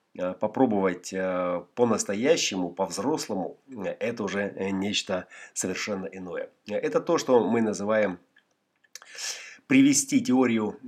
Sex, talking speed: male, 85 wpm